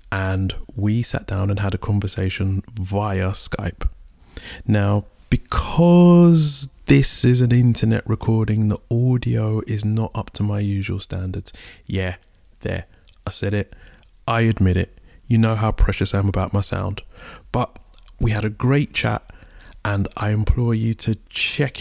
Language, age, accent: English, 20-39, British